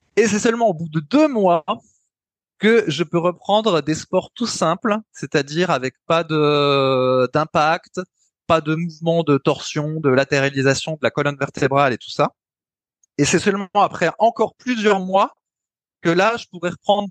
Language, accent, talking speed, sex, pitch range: French, French, 165 wpm, male, 145-195 Hz